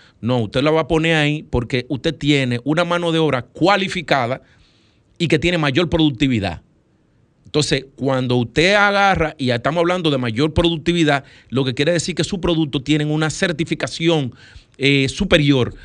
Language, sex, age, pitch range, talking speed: Spanish, male, 40-59, 135-175 Hz, 165 wpm